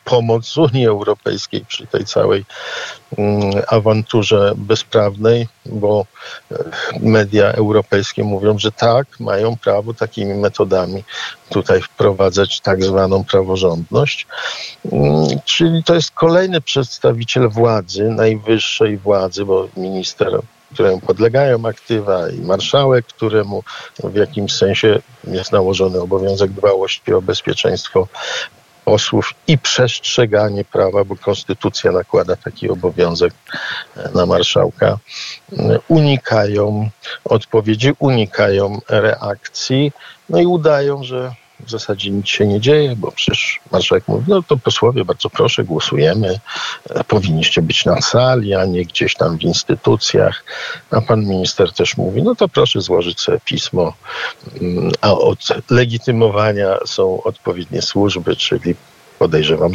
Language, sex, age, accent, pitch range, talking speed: Polish, male, 50-69, native, 100-135 Hz, 110 wpm